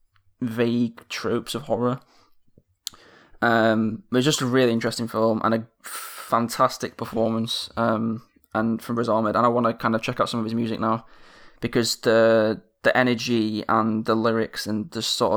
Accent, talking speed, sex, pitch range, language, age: British, 175 wpm, male, 110-120 Hz, English, 20-39